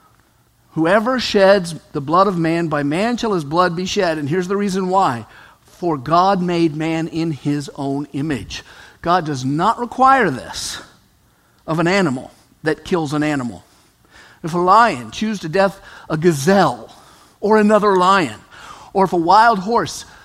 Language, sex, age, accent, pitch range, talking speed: English, male, 50-69, American, 150-215 Hz, 160 wpm